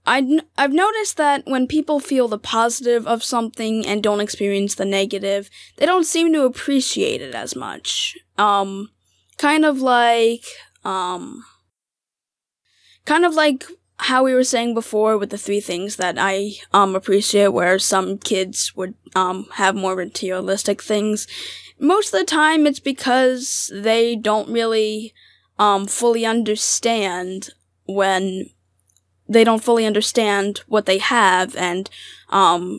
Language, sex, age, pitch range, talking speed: English, female, 10-29, 195-240 Hz, 135 wpm